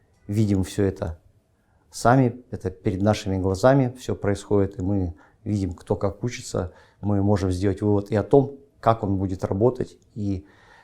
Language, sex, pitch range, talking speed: Russian, male, 95-115 Hz, 155 wpm